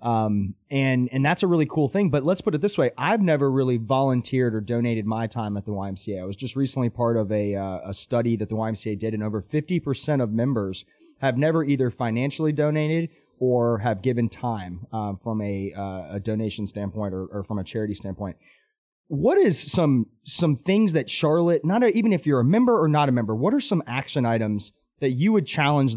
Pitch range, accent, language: 110-150 Hz, American, English